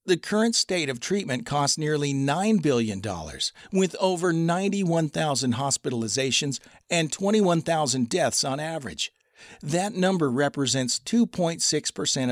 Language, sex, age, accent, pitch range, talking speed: English, male, 50-69, American, 135-185 Hz, 105 wpm